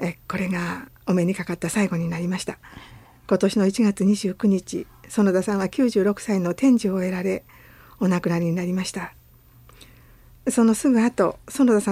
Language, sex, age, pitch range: Japanese, female, 50-69, 180-230 Hz